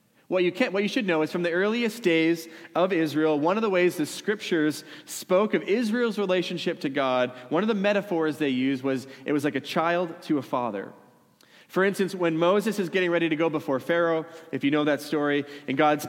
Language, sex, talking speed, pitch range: English, male, 220 wpm, 150-190 Hz